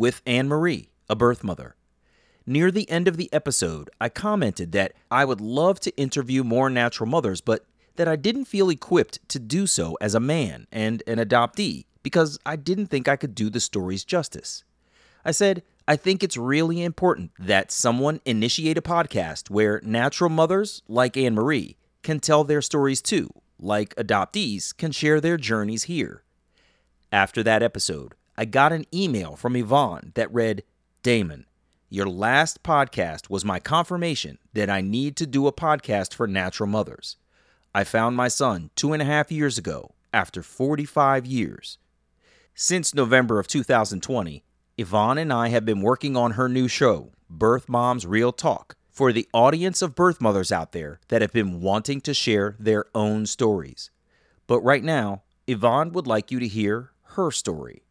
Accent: American